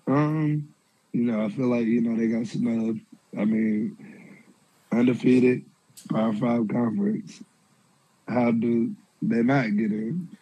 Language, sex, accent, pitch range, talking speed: English, male, American, 120-175 Hz, 140 wpm